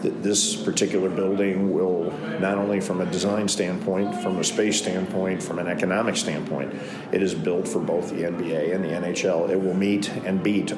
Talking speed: 185 wpm